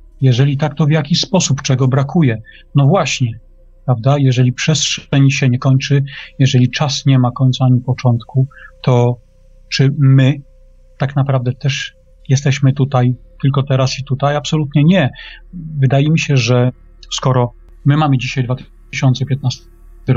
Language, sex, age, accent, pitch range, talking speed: Polish, male, 40-59, native, 130-145 Hz, 135 wpm